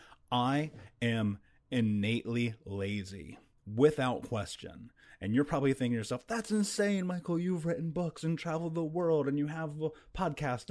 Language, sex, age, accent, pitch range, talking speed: English, male, 30-49, American, 100-130 Hz, 145 wpm